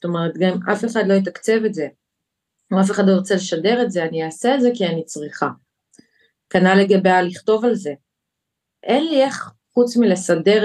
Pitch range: 170-220 Hz